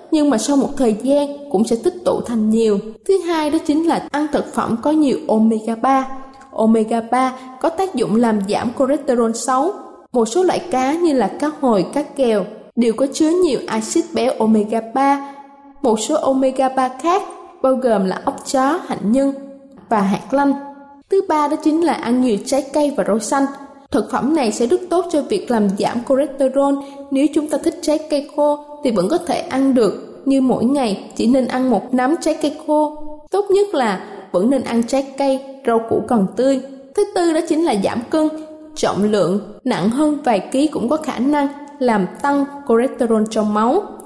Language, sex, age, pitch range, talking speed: Vietnamese, female, 20-39, 230-300 Hz, 200 wpm